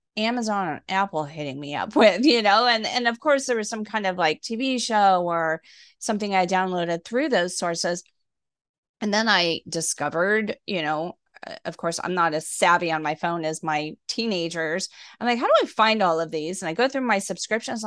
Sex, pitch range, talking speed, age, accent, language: female, 170-245 Hz, 205 wpm, 30-49, American, English